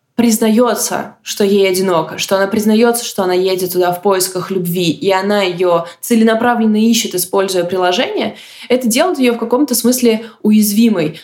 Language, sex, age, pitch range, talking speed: Russian, female, 20-39, 185-225 Hz, 150 wpm